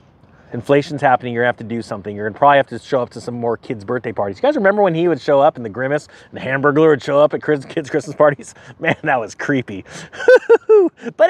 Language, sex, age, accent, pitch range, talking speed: English, male, 30-49, American, 140-210 Hz, 260 wpm